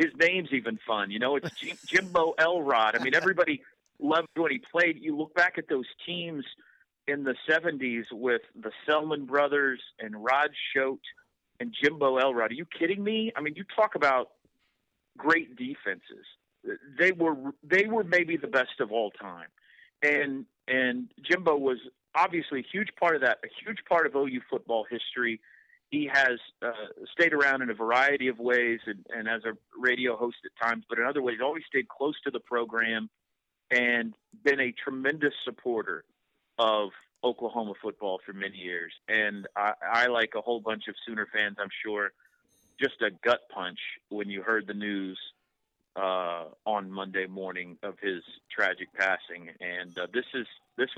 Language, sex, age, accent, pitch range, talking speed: English, male, 50-69, American, 110-165 Hz, 170 wpm